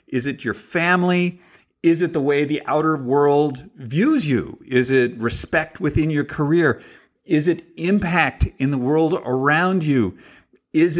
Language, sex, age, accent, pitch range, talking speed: English, male, 50-69, American, 130-195 Hz, 155 wpm